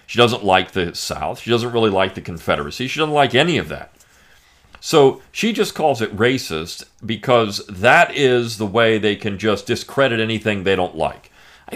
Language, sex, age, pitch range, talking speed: English, male, 40-59, 100-140 Hz, 190 wpm